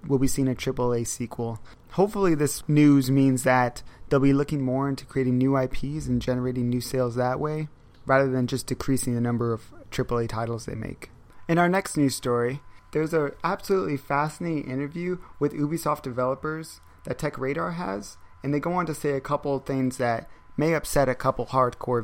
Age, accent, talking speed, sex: 30-49, American, 185 wpm, male